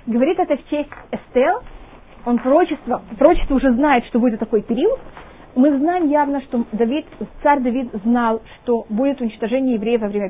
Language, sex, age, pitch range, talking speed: Russian, female, 30-49, 230-290 Hz, 155 wpm